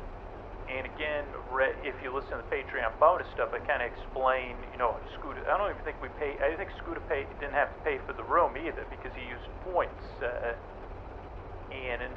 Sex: male